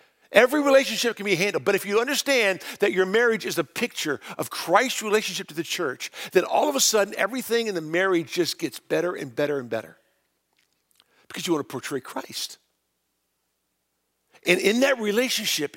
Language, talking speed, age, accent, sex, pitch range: English, 180 wpm, 50-69, American, male, 140-205 Hz